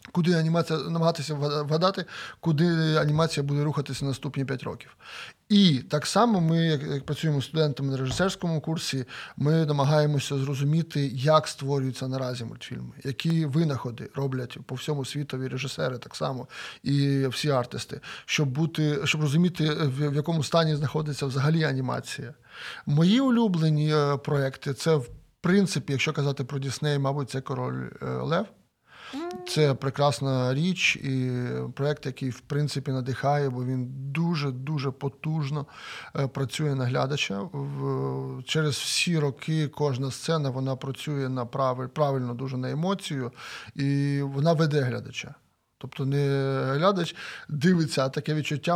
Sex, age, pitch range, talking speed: male, 20-39, 135-155 Hz, 130 wpm